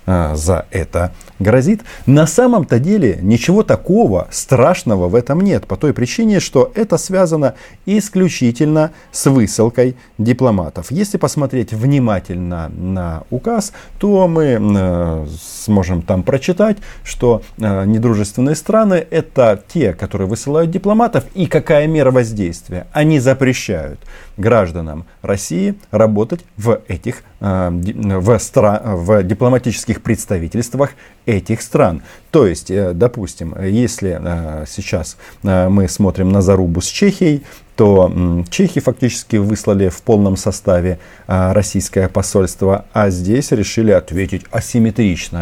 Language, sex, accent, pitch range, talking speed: Russian, male, native, 95-140 Hz, 110 wpm